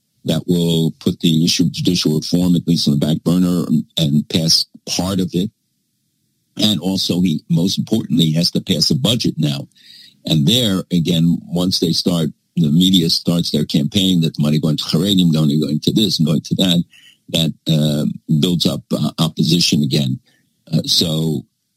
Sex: male